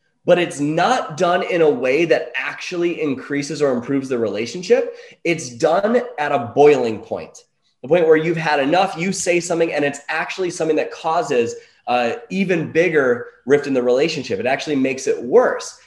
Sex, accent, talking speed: male, American, 180 wpm